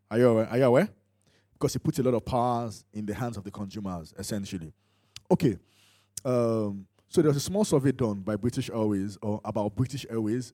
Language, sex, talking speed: English, male, 205 wpm